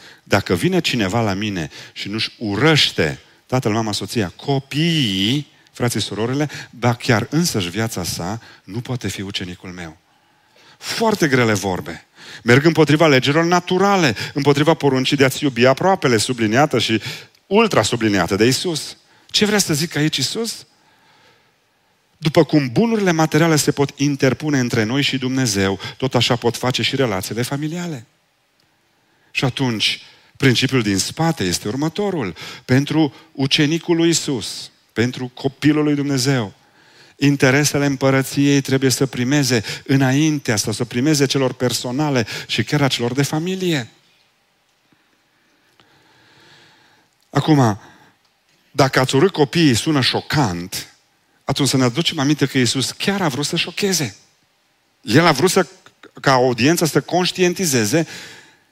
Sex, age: male, 40-59